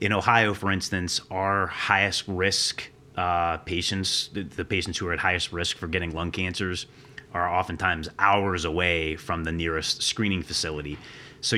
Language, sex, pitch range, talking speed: English, male, 85-105 Hz, 160 wpm